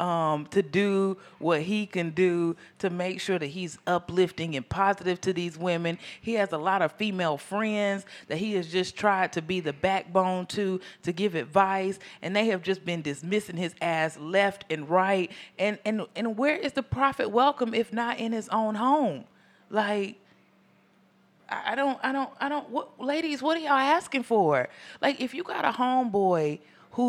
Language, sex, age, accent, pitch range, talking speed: English, female, 30-49, American, 170-230 Hz, 185 wpm